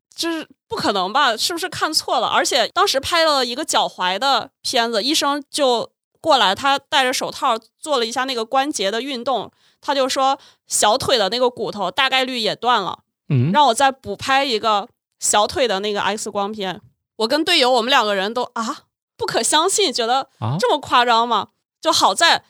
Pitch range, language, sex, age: 220-280 Hz, Chinese, female, 20-39